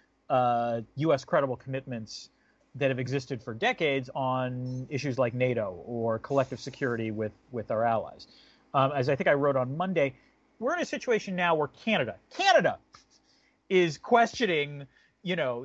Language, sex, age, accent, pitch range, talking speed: English, male, 40-59, American, 125-170 Hz, 155 wpm